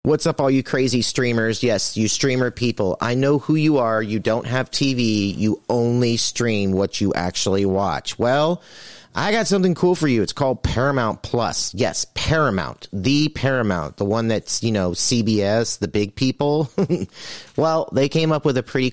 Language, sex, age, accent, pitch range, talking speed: English, male, 30-49, American, 110-135 Hz, 180 wpm